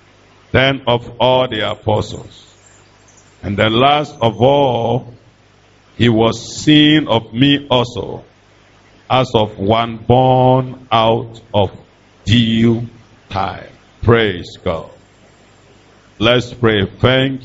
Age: 50-69